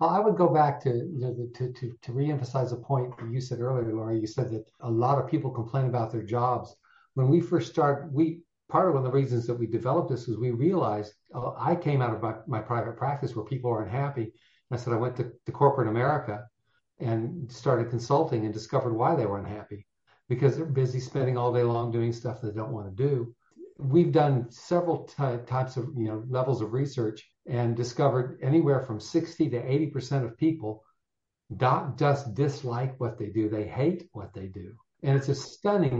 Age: 50-69